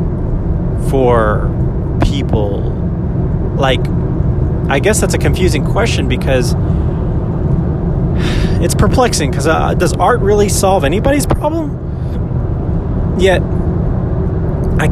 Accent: American